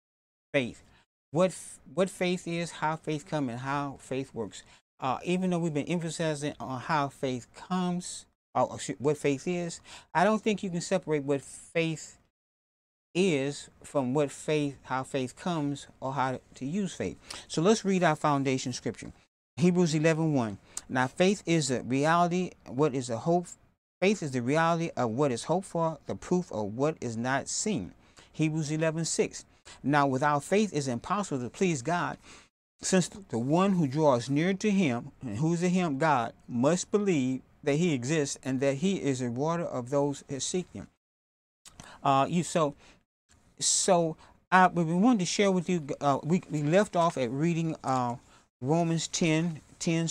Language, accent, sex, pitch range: English, American, male, 135-175 Hz